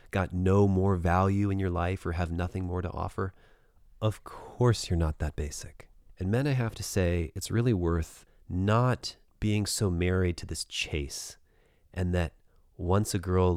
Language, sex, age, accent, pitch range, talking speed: English, male, 30-49, American, 80-100 Hz, 175 wpm